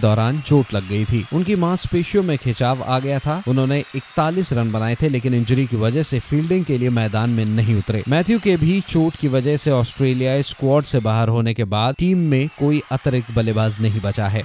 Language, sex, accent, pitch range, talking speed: Hindi, male, native, 115-145 Hz, 210 wpm